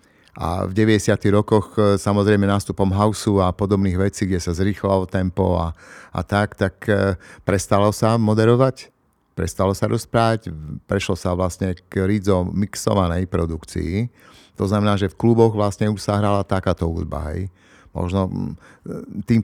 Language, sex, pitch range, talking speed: Slovak, male, 90-110 Hz, 135 wpm